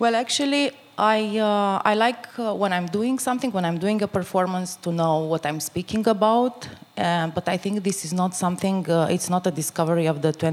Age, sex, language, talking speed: 30-49, female, Swedish, 210 wpm